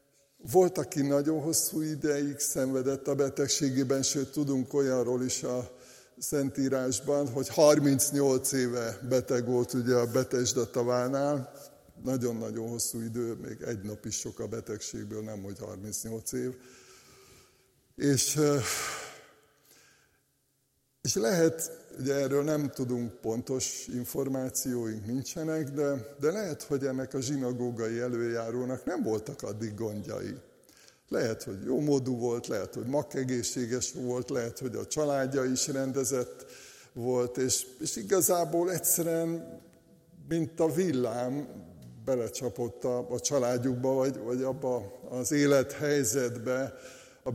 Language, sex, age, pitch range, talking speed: Hungarian, male, 60-79, 125-145 Hz, 115 wpm